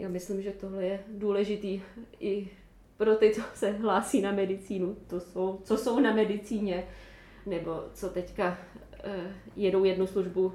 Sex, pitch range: female, 180-200 Hz